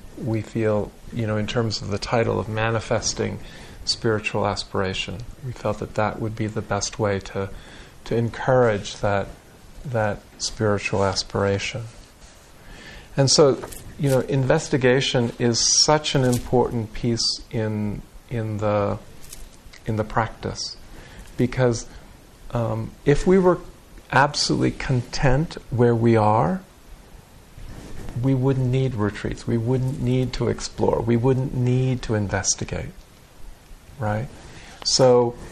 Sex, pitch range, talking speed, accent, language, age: male, 105-125 Hz, 125 wpm, American, English, 50-69